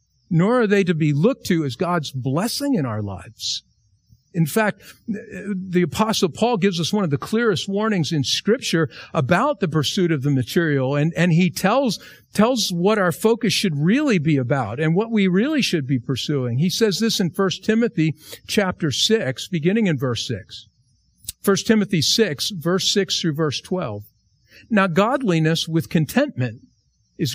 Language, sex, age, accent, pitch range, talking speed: English, male, 50-69, American, 135-210 Hz, 170 wpm